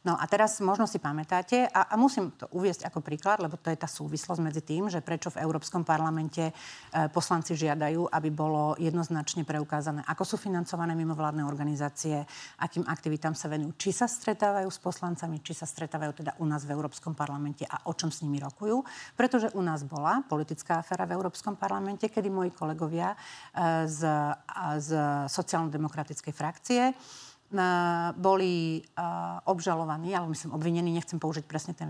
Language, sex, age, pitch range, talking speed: Slovak, female, 40-59, 155-190 Hz, 165 wpm